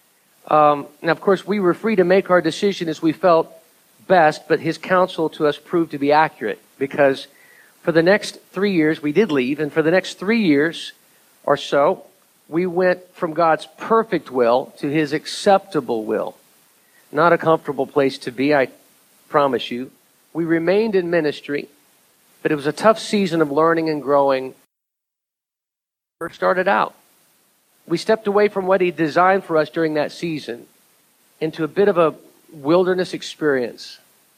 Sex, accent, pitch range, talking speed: male, American, 145-185 Hz, 170 wpm